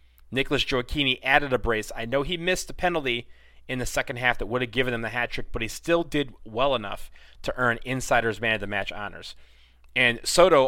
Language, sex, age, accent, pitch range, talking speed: English, male, 30-49, American, 105-140 Hz, 220 wpm